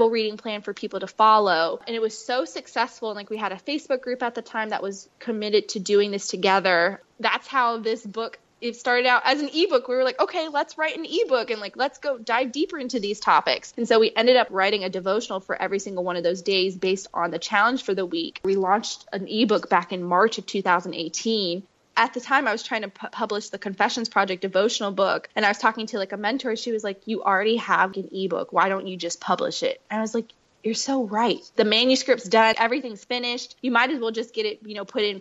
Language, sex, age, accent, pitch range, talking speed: English, female, 20-39, American, 200-250 Hz, 245 wpm